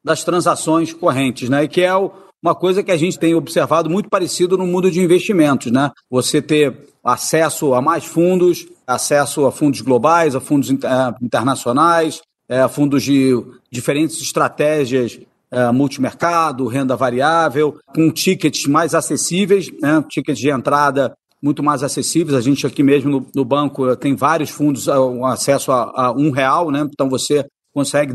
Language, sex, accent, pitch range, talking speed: Portuguese, male, Brazilian, 140-165 Hz, 160 wpm